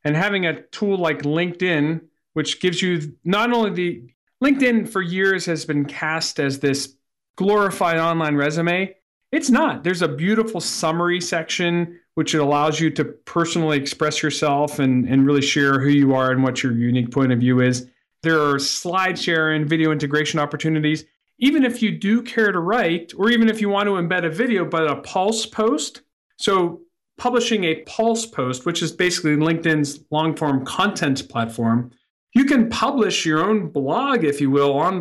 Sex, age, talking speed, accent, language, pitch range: male, 40-59, 175 wpm, American, English, 145-190 Hz